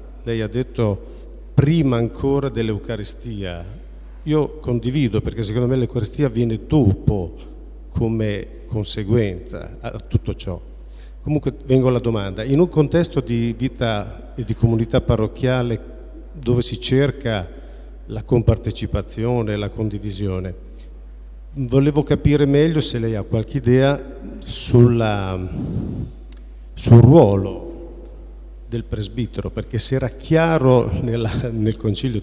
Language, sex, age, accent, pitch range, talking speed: Italian, male, 50-69, native, 105-130 Hz, 110 wpm